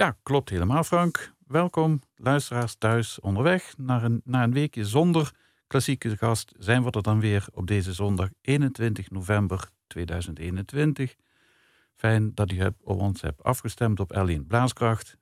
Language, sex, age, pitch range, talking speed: Dutch, male, 50-69, 100-130 Hz, 140 wpm